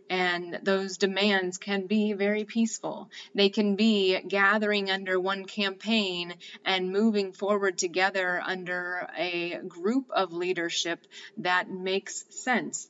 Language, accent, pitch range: English, American, 185-220 Hz